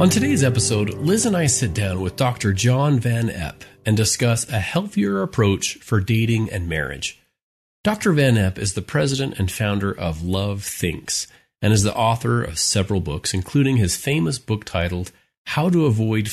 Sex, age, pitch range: male, 40-59, 90-120 Hz